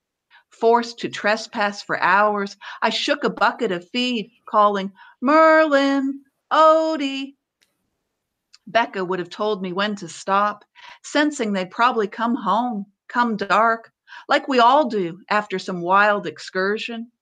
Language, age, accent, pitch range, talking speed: English, 50-69, American, 195-240 Hz, 130 wpm